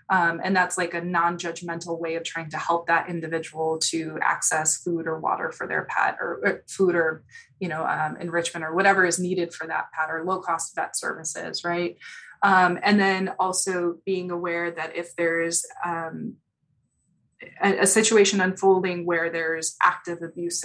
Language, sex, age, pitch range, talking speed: English, female, 20-39, 165-190 Hz, 170 wpm